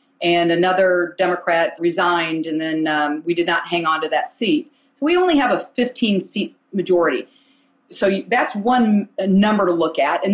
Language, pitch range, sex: English, 175-240 Hz, female